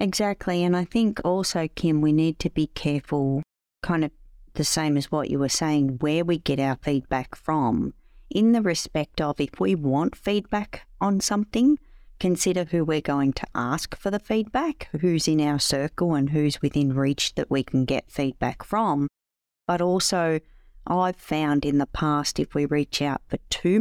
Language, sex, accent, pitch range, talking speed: English, female, Australian, 140-175 Hz, 180 wpm